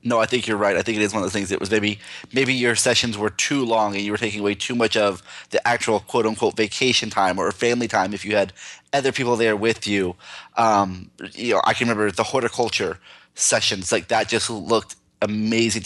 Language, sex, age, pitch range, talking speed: English, male, 20-39, 105-120 Hz, 230 wpm